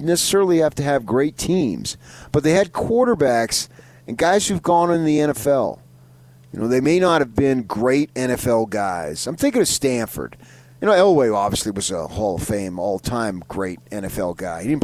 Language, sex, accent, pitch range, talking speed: English, male, American, 105-150 Hz, 185 wpm